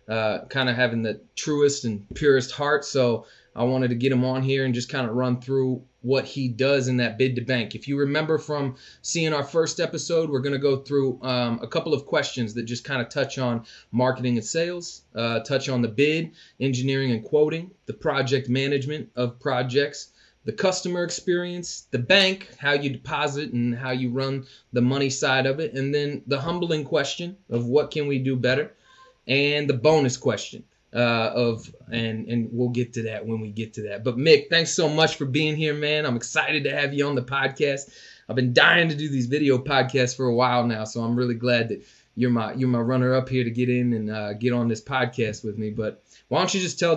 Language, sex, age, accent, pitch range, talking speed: English, male, 20-39, American, 120-150 Hz, 220 wpm